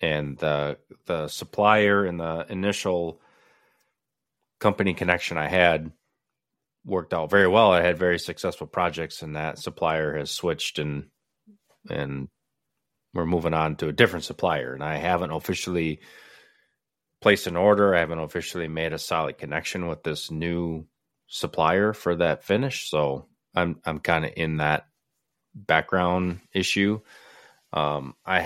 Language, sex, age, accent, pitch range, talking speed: English, male, 30-49, American, 80-95 Hz, 140 wpm